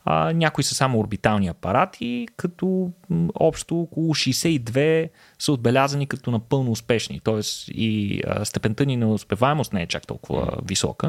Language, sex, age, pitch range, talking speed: Bulgarian, male, 20-39, 100-145 Hz, 150 wpm